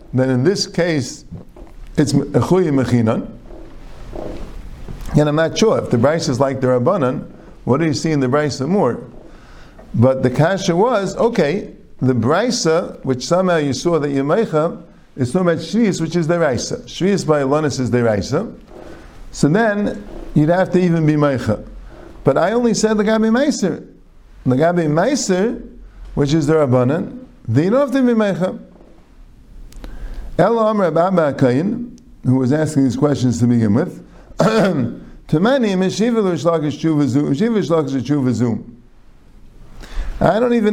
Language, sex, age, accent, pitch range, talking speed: English, male, 50-69, American, 135-185 Hz, 135 wpm